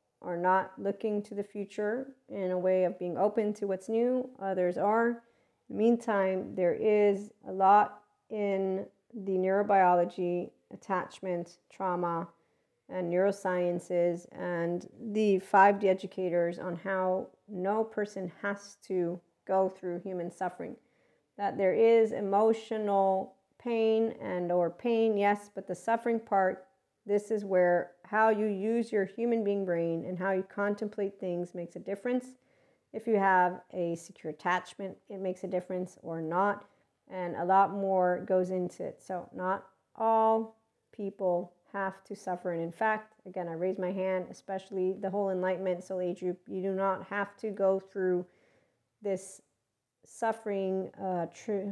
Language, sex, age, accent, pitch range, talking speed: English, female, 40-59, American, 180-205 Hz, 145 wpm